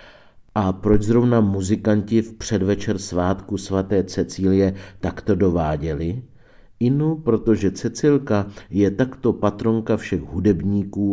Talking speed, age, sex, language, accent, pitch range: 100 wpm, 50-69, male, Czech, native, 90-110 Hz